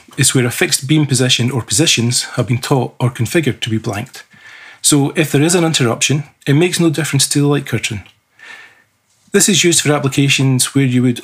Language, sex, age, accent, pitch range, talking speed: English, male, 40-59, British, 120-150 Hz, 205 wpm